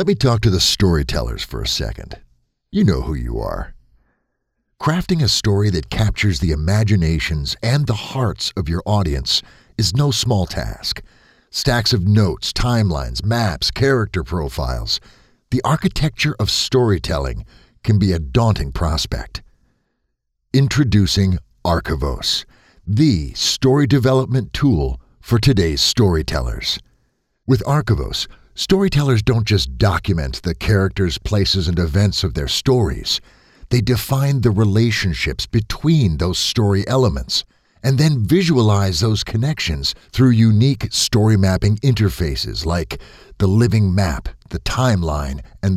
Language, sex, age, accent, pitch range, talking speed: English, male, 50-69, American, 85-125 Hz, 125 wpm